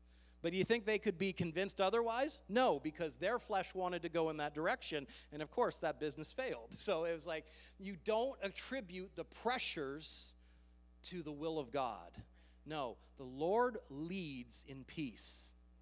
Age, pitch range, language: 40-59, 145-215 Hz, English